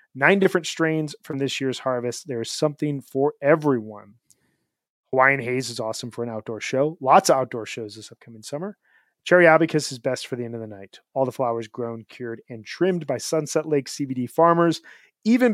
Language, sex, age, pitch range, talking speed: English, male, 30-49, 125-155 Hz, 195 wpm